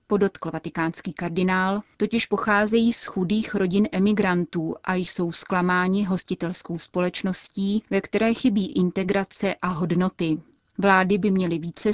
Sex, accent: female, native